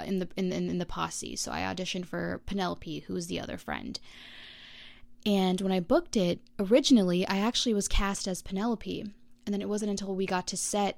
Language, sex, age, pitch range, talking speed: English, female, 20-39, 180-220 Hz, 195 wpm